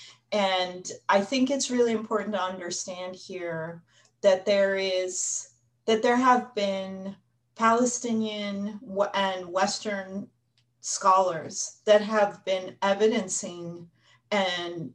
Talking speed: 100 wpm